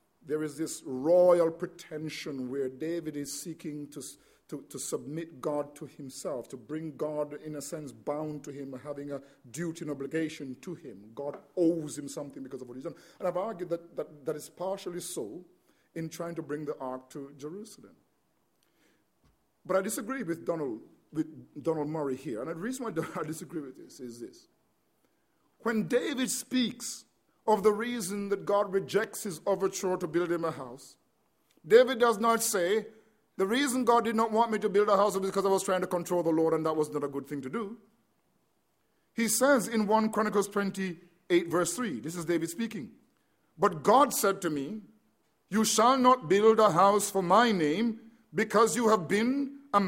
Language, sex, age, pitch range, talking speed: English, male, 50-69, 155-220 Hz, 190 wpm